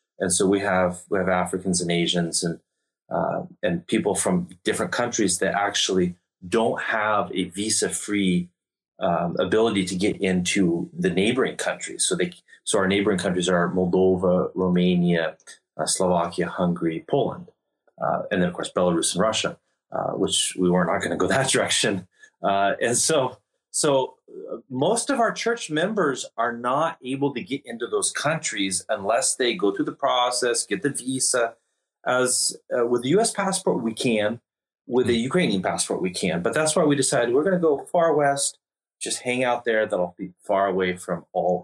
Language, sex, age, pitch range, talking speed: English, male, 30-49, 90-145 Hz, 175 wpm